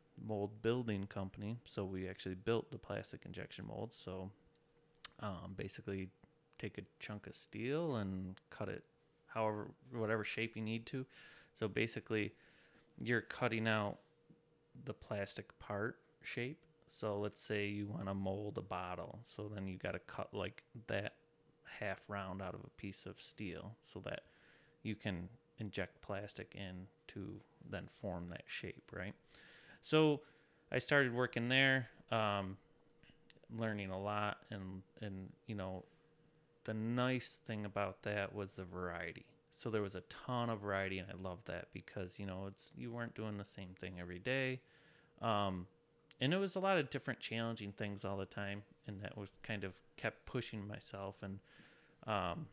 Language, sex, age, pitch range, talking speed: English, male, 30-49, 100-130 Hz, 160 wpm